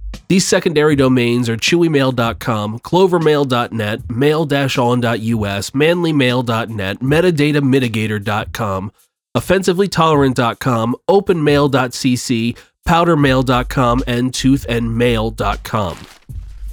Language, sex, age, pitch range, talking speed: English, male, 30-49, 115-155 Hz, 50 wpm